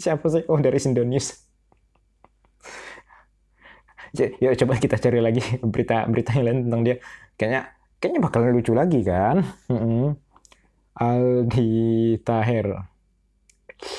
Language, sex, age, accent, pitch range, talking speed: Indonesian, male, 20-39, native, 115-160 Hz, 105 wpm